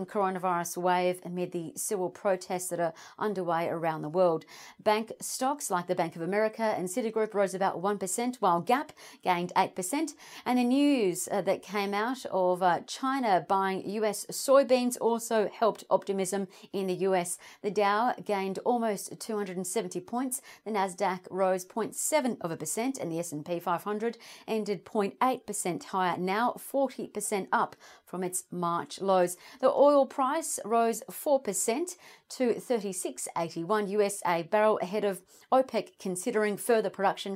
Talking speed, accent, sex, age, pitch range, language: 140 wpm, Australian, female, 40-59, 185-245 Hz, English